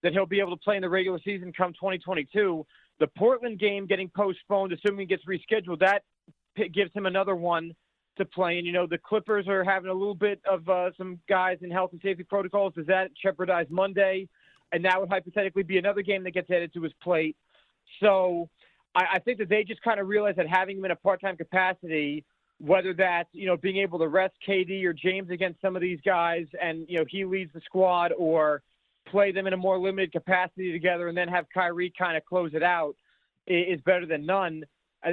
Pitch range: 175-195 Hz